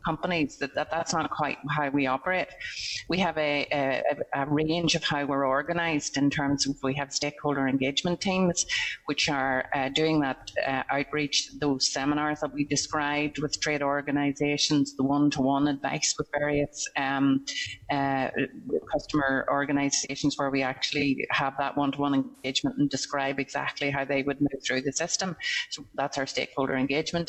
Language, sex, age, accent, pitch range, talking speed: English, female, 30-49, Irish, 135-150 Hz, 160 wpm